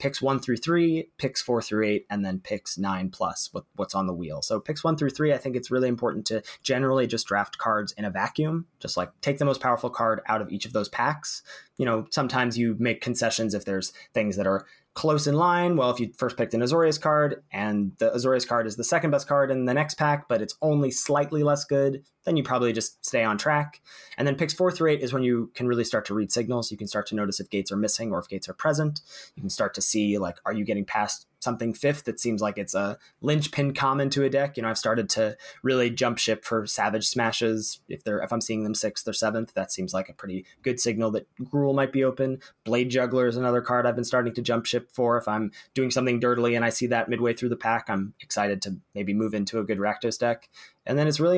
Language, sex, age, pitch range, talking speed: English, male, 20-39, 110-140 Hz, 255 wpm